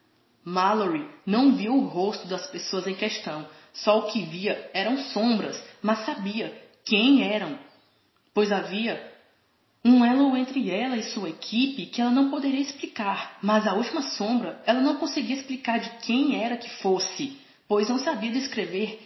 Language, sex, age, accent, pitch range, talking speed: Portuguese, female, 20-39, Brazilian, 195-240 Hz, 155 wpm